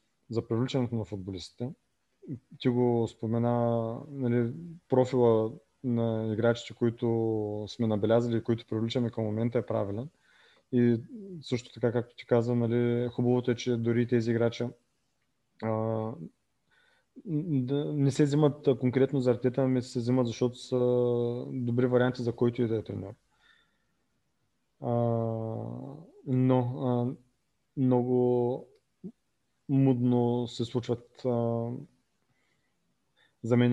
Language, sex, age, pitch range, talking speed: Bulgarian, male, 20-39, 115-125 Hz, 110 wpm